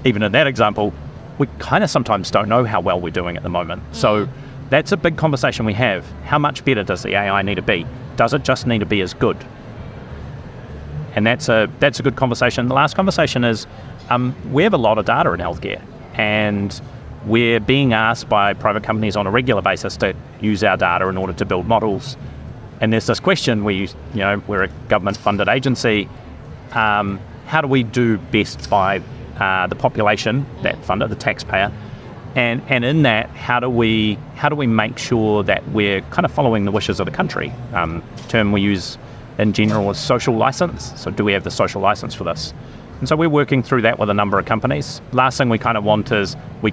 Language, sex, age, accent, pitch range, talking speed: English, male, 30-49, Australian, 105-130 Hz, 215 wpm